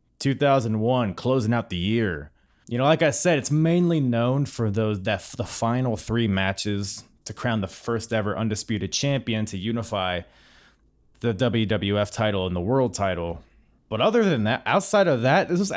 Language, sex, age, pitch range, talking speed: English, male, 20-39, 105-140 Hz, 170 wpm